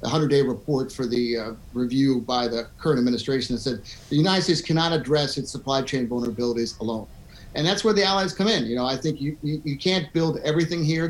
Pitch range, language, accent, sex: 120-155 Hz, English, American, male